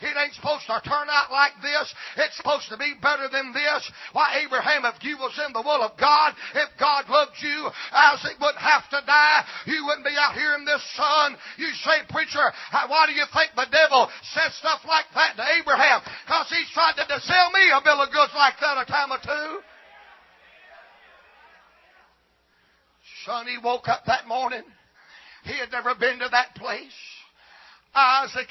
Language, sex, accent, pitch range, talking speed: English, male, American, 275-295 Hz, 180 wpm